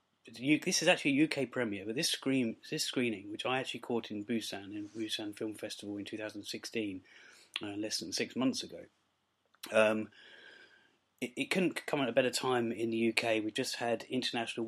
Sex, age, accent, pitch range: male, 30-49, British, 110-125 Hz